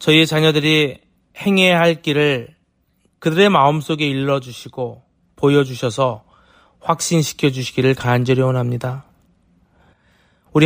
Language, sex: Korean, male